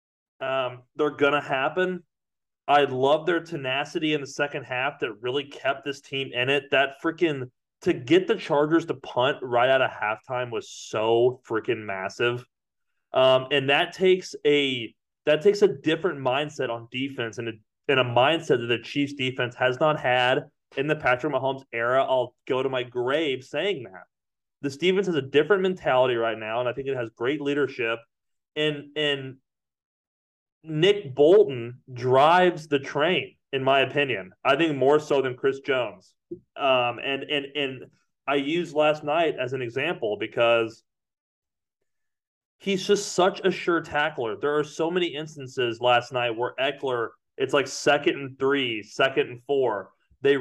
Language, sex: English, male